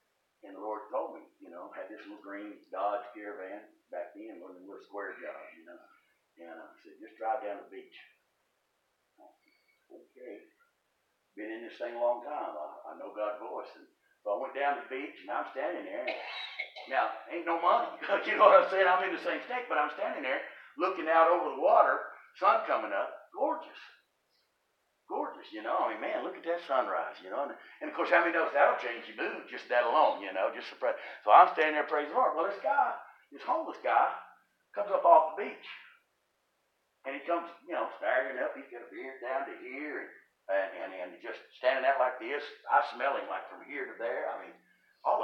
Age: 60-79